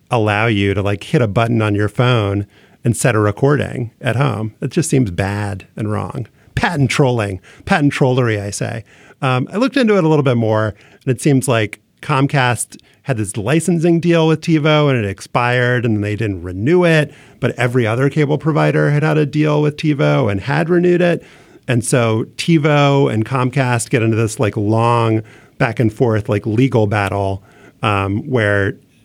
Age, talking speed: 40-59, 180 wpm